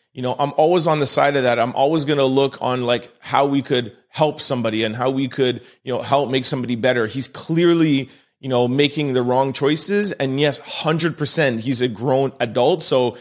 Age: 30-49